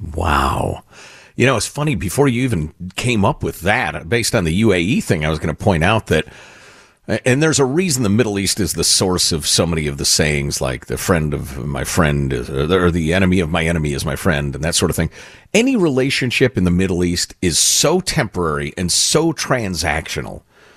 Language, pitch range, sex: English, 80-115 Hz, male